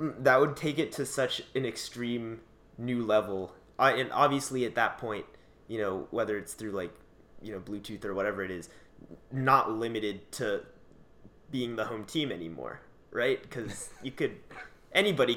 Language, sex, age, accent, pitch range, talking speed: English, male, 20-39, American, 105-130 Hz, 165 wpm